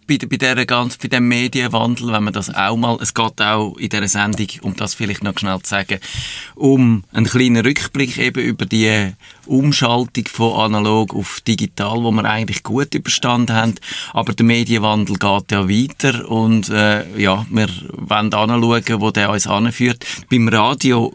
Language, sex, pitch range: German, male, 100-120 Hz